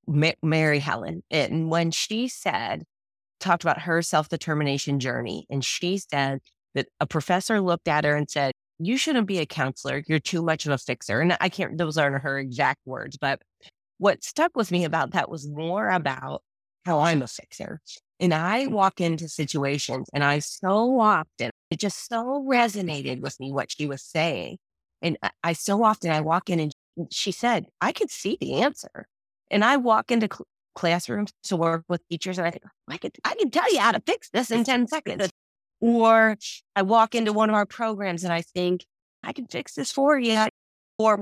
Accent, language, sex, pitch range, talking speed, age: American, English, female, 155-220 Hz, 195 wpm, 30-49